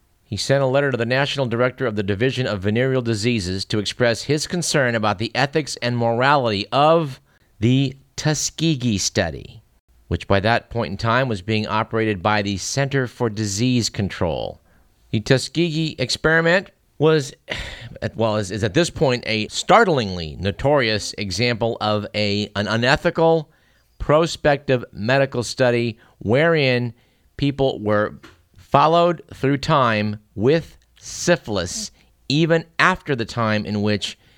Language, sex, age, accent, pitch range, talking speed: English, male, 50-69, American, 100-130 Hz, 130 wpm